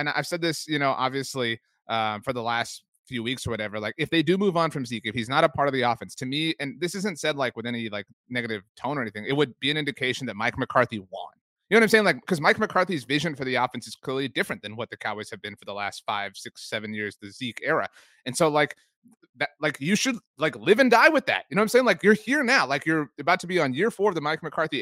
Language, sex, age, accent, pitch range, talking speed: English, male, 30-49, American, 120-165 Hz, 290 wpm